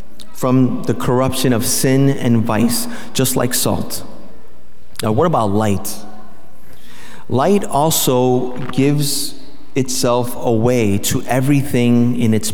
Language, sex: English, male